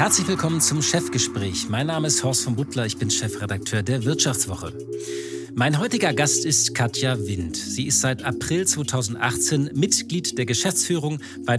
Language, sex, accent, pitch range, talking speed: German, male, German, 120-165 Hz, 155 wpm